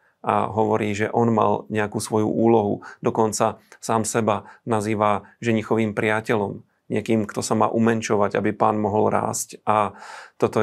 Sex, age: male, 40-59